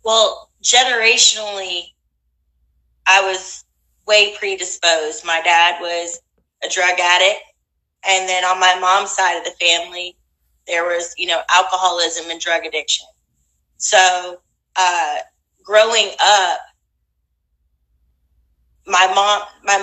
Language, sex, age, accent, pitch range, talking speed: English, female, 30-49, American, 165-195 Hz, 105 wpm